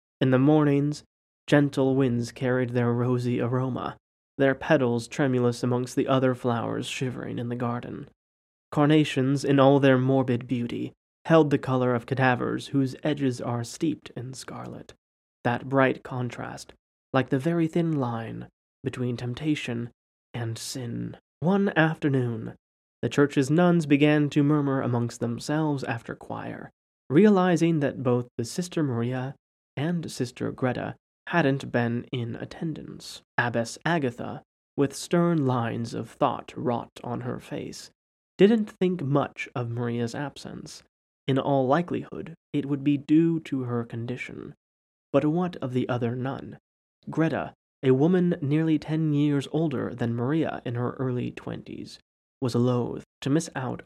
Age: 20-39